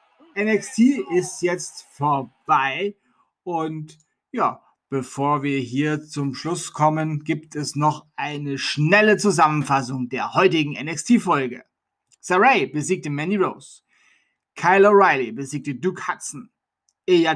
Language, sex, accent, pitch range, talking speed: German, male, German, 145-200 Hz, 105 wpm